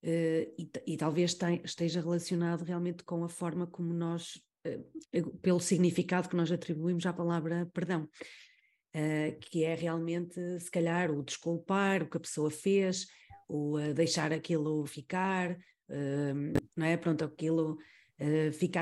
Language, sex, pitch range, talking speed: Portuguese, female, 165-200 Hz, 120 wpm